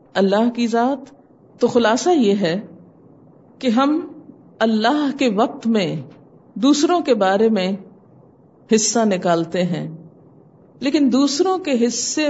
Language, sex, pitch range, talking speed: Urdu, female, 190-275 Hz, 115 wpm